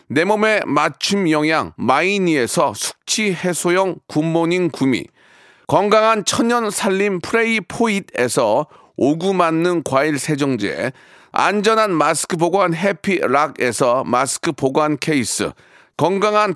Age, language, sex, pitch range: 40-59, Korean, male, 165-215 Hz